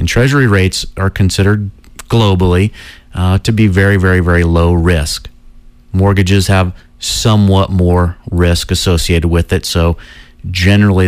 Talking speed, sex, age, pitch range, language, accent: 130 wpm, male, 40-59, 90-105 Hz, English, American